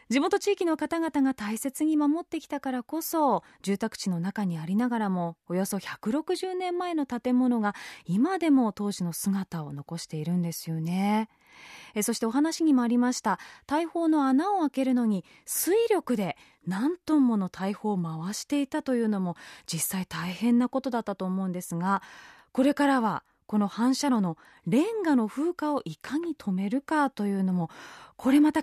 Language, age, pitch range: Japanese, 20-39, 190-295 Hz